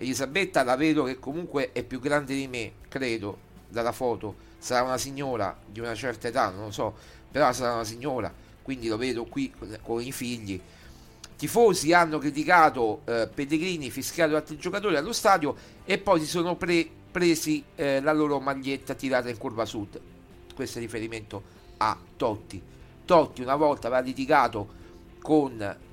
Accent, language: native, Italian